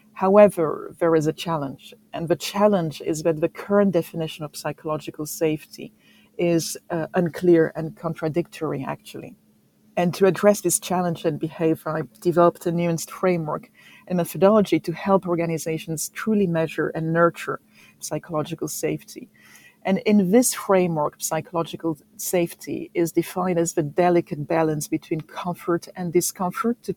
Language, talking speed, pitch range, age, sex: English, 140 wpm, 160-190 Hz, 40-59, female